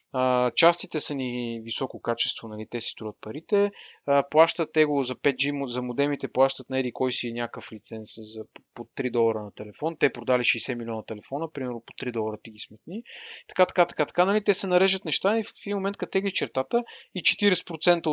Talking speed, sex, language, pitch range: 200 wpm, male, Bulgarian, 125-190 Hz